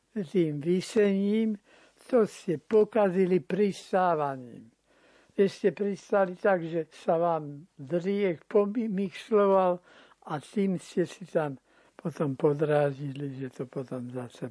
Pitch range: 165-200 Hz